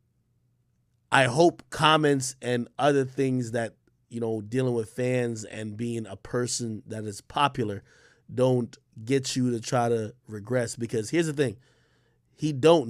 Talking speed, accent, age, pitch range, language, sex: 150 wpm, American, 30-49, 120-160 Hz, English, male